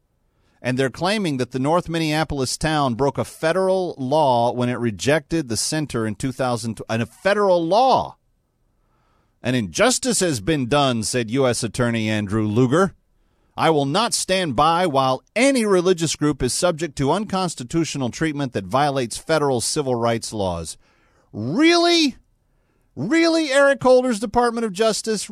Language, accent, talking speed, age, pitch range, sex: English, American, 140 wpm, 40-59, 125-210 Hz, male